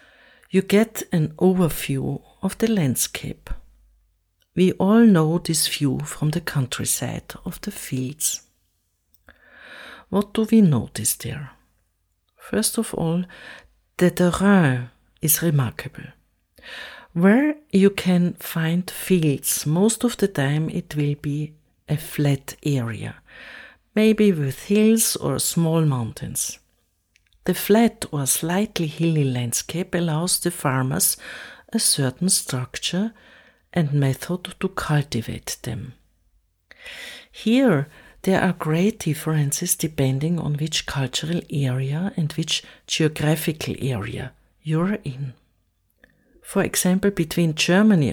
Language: English